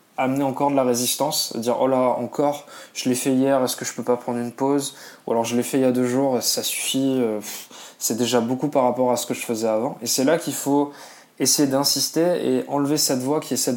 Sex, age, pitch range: male, 20-39, 120-145 Hz